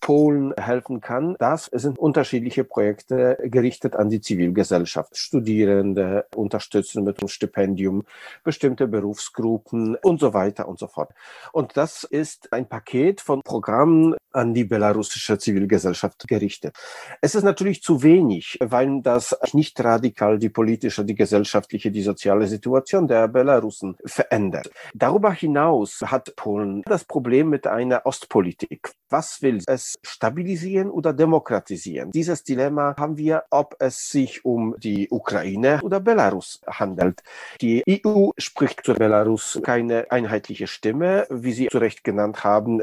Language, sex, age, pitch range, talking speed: English, male, 50-69, 110-155 Hz, 135 wpm